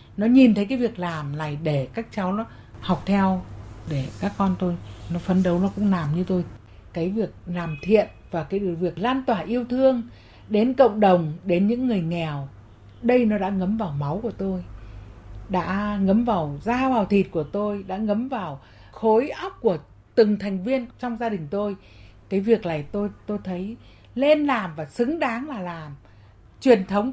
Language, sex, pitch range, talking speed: Vietnamese, female, 165-240 Hz, 190 wpm